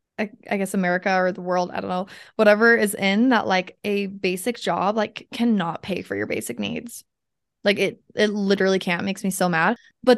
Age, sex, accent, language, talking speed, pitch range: 20-39, female, American, English, 205 wpm, 185-220 Hz